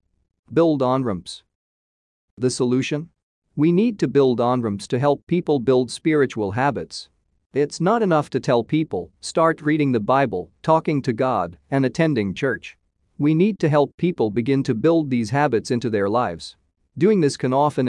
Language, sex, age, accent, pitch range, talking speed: English, male, 40-59, American, 105-150 Hz, 170 wpm